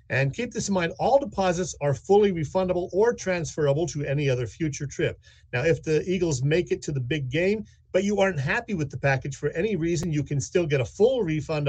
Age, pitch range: 50-69, 125-185 Hz